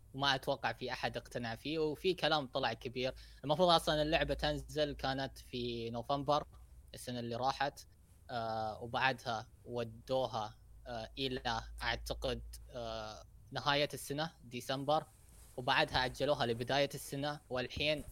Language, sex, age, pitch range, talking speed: Arabic, female, 20-39, 120-155 Hz, 105 wpm